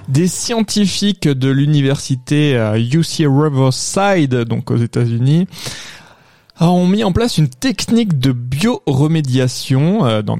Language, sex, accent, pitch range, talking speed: French, male, French, 130-165 Hz, 110 wpm